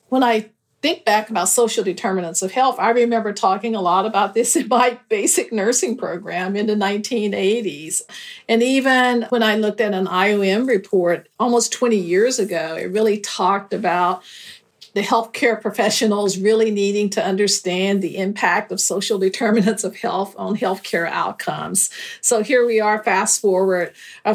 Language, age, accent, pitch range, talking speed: English, 50-69, American, 185-225 Hz, 160 wpm